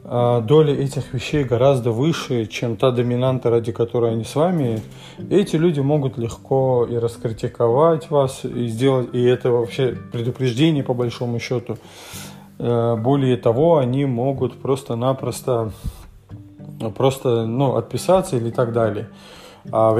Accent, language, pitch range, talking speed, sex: native, Russian, 120-145 Hz, 125 wpm, male